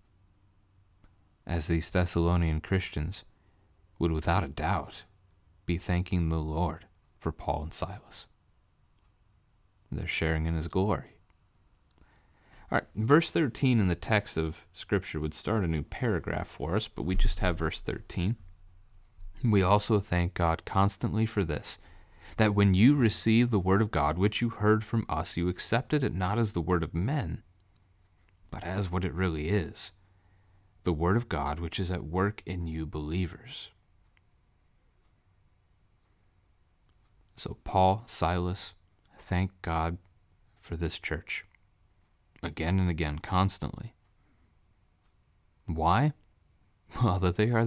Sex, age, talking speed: male, 30-49, 135 wpm